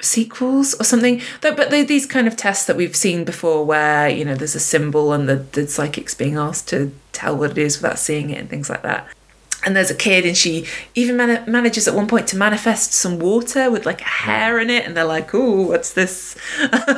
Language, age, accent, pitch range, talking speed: English, 20-39, British, 165-220 Hz, 230 wpm